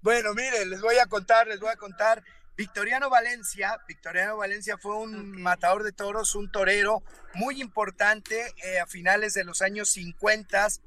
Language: Spanish